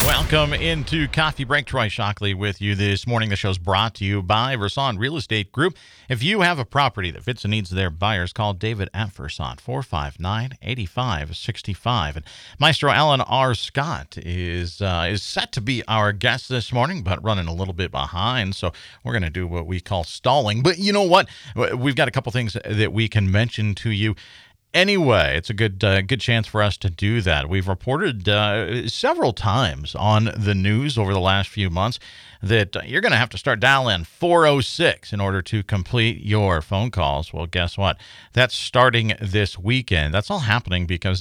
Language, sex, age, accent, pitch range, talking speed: English, male, 40-59, American, 95-125 Hz, 205 wpm